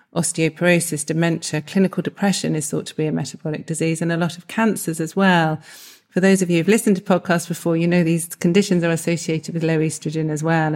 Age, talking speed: 40-59, 210 wpm